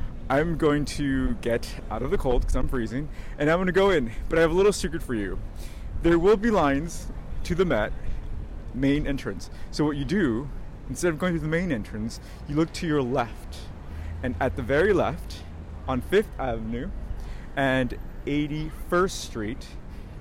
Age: 30-49